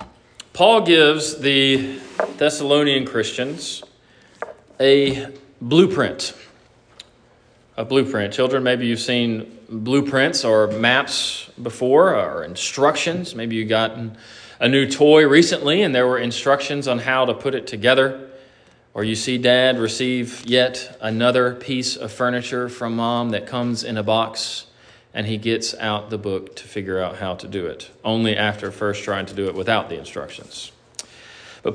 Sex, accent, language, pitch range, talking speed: male, American, English, 115-150 Hz, 145 wpm